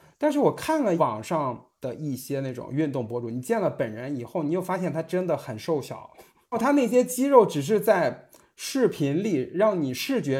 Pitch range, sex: 130-185 Hz, male